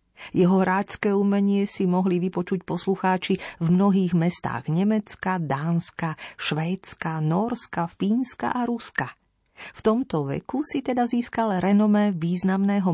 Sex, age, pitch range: female, 40-59, 165-215 Hz